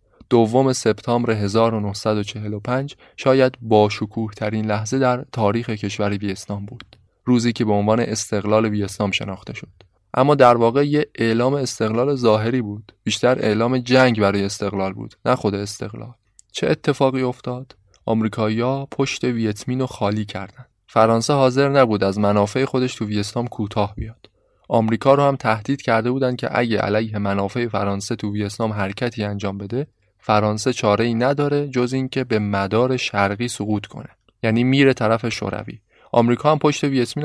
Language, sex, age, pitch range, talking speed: Persian, male, 20-39, 105-125 Hz, 145 wpm